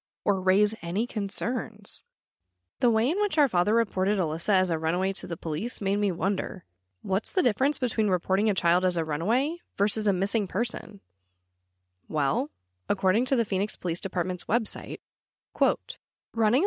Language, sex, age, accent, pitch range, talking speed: English, female, 10-29, American, 165-215 Hz, 160 wpm